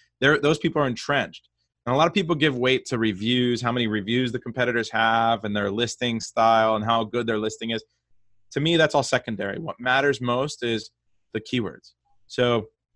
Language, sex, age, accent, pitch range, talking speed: English, male, 30-49, American, 110-130 Hz, 190 wpm